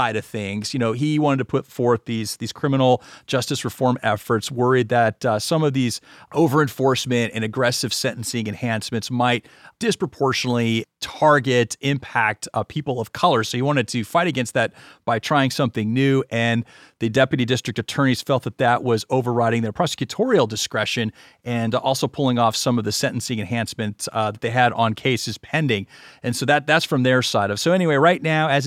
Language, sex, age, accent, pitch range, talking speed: English, male, 30-49, American, 120-155 Hz, 185 wpm